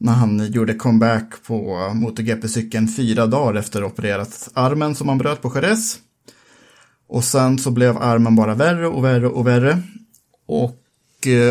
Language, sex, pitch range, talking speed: Swedish, male, 120-150 Hz, 150 wpm